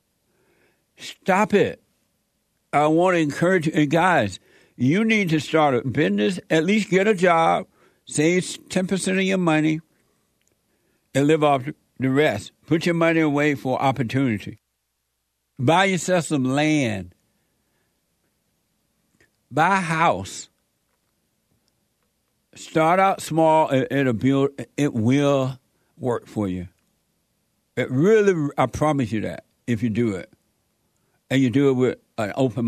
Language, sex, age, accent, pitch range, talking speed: English, male, 60-79, American, 120-170 Hz, 130 wpm